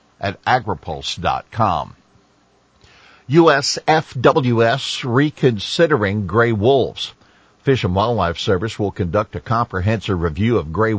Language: English